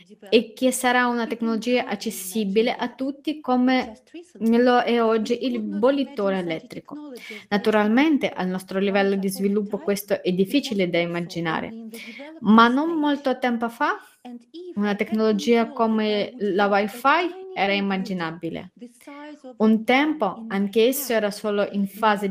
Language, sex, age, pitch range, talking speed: Italian, female, 20-39, 205-255 Hz, 120 wpm